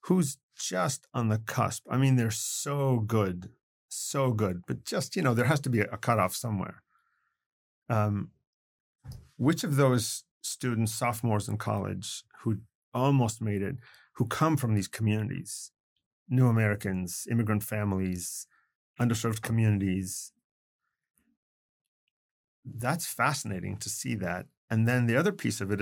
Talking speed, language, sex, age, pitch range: 135 wpm, English, male, 40-59, 105-130 Hz